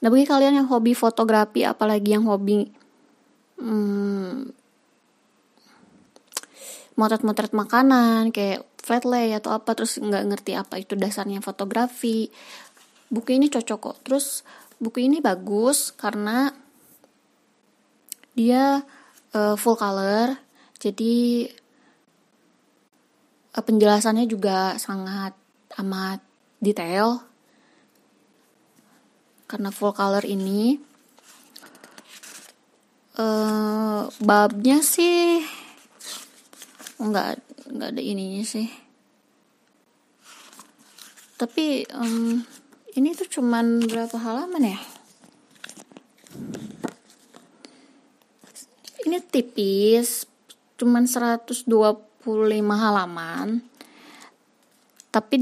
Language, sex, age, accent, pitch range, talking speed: Indonesian, female, 20-39, native, 215-270 Hz, 75 wpm